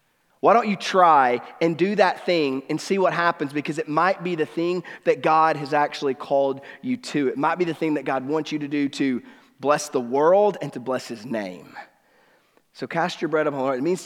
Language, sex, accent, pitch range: English, male, American, 165-240 Hz